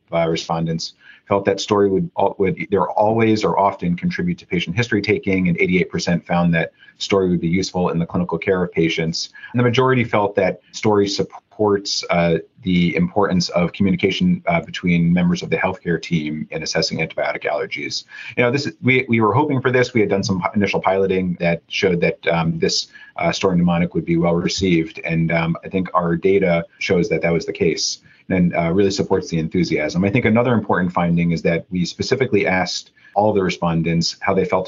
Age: 30-49